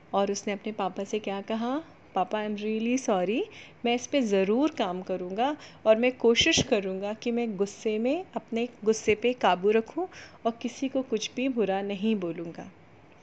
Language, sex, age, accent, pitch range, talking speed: Hindi, female, 30-49, native, 200-255 Hz, 175 wpm